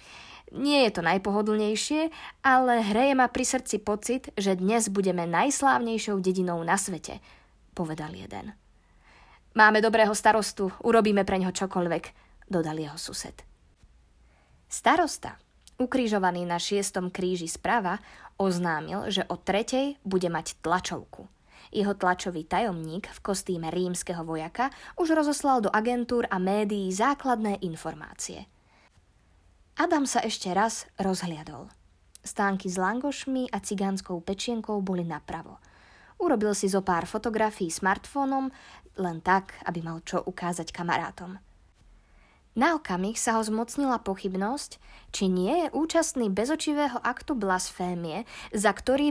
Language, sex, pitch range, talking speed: Slovak, female, 180-240 Hz, 120 wpm